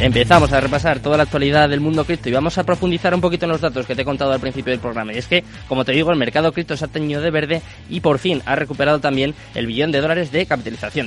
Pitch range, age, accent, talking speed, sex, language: 125-155 Hz, 20-39, Spanish, 280 wpm, male, Spanish